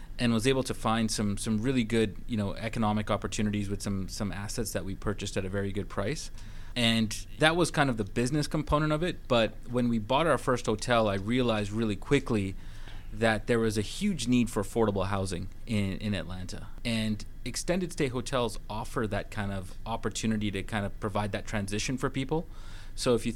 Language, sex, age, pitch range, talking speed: English, male, 30-49, 100-120 Hz, 200 wpm